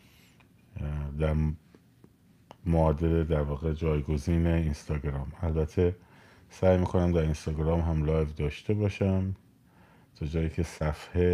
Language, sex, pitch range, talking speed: Persian, male, 75-90 Hz, 105 wpm